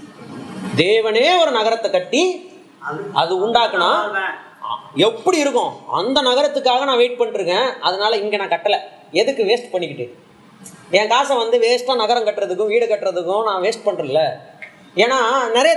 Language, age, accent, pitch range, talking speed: Tamil, 30-49, native, 195-255 Hz, 125 wpm